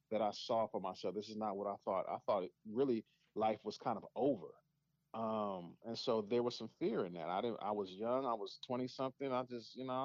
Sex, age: male, 40-59